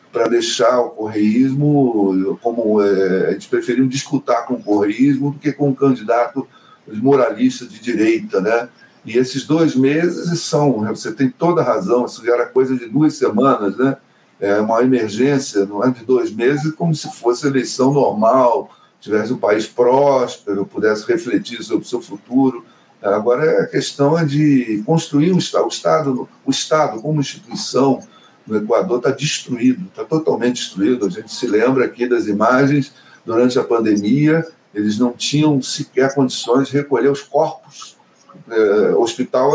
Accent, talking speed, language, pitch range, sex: Brazilian, 160 wpm, Portuguese, 120-155 Hz, male